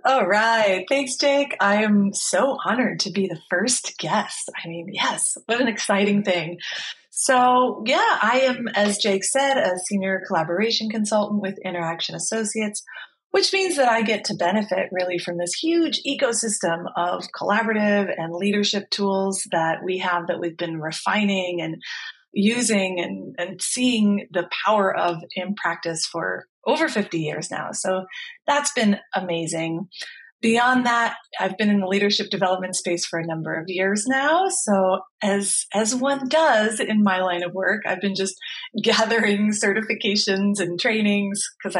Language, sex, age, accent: English, female, 30-49, American